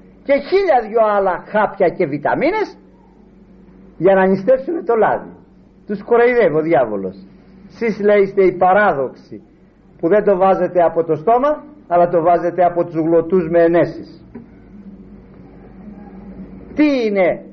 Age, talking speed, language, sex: 50-69, 125 wpm, Greek, male